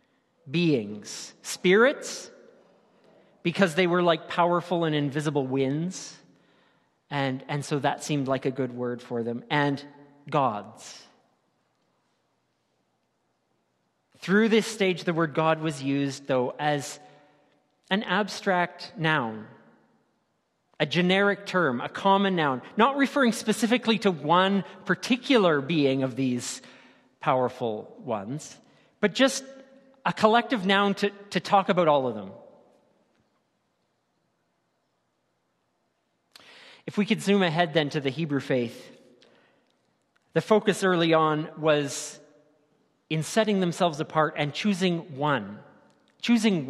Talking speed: 115 wpm